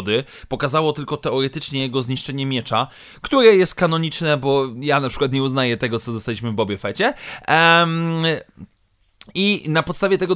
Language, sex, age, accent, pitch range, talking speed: Polish, male, 30-49, native, 125-160 Hz, 145 wpm